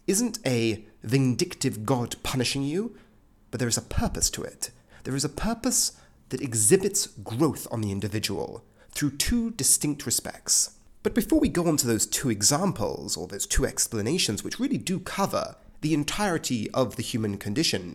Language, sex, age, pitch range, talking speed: English, male, 30-49, 110-185 Hz, 165 wpm